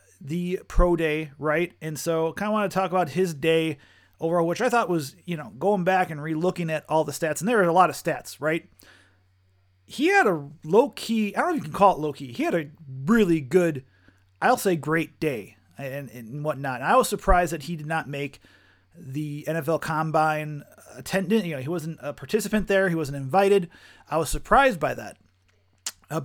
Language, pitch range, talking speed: English, 150-195 Hz, 215 wpm